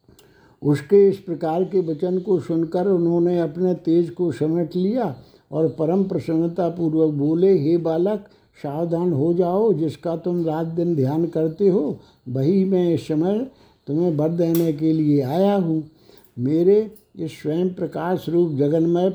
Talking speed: 140 wpm